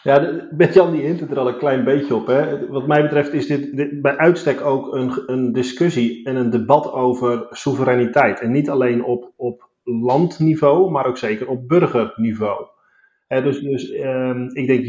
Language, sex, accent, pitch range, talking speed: Dutch, male, Dutch, 125-140 Hz, 190 wpm